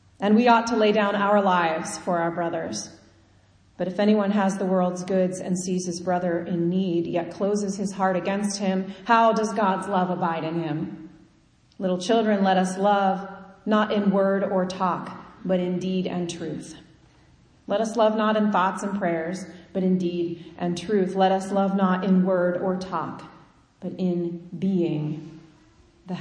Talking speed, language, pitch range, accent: 175 wpm, English, 170-190 Hz, American